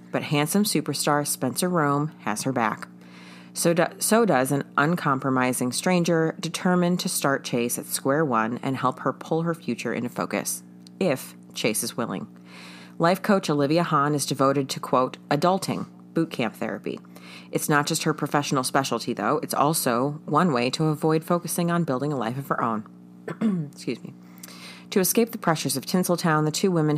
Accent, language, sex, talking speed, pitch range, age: American, English, female, 170 wpm, 120-155 Hz, 30-49